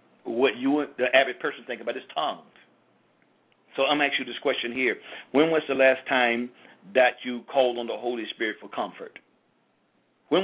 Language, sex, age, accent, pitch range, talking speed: English, male, 50-69, American, 125-135 Hz, 180 wpm